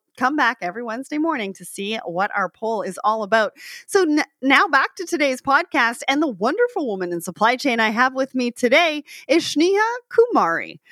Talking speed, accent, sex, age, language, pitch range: 190 wpm, American, female, 30-49, English, 205-295 Hz